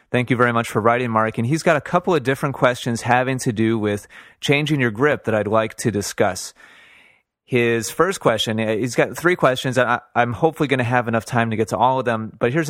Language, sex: English, male